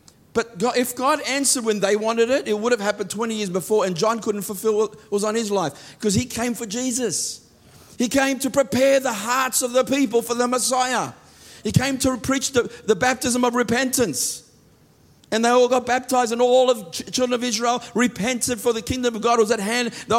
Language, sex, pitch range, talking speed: English, male, 195-250 Hz, 210 wpm